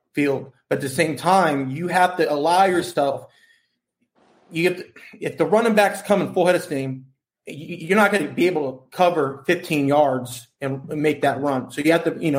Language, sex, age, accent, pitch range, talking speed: English, male, 20-39, American, 145-175 Hz, 215 wpm